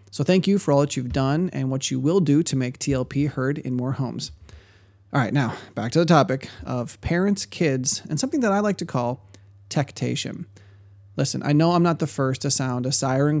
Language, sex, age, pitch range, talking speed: English, male, 30-49, 120-160 Hz, 220 wpm